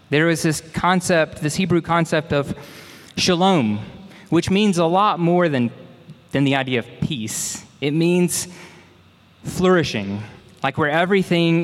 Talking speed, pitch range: 135 wpm, 130-170 Hz